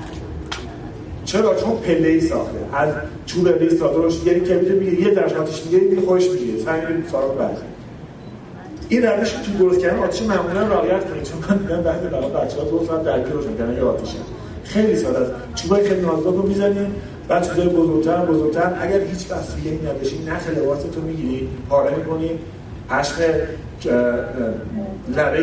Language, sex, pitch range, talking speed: Persian, male, 160-200 Hz, 175 wpm